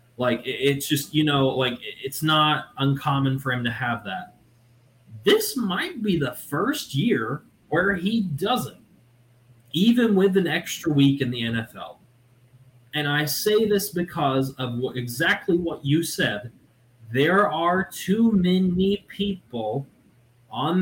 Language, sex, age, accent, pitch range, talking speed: English, male, 20-39, American, 125-175 Hz, 140 wpm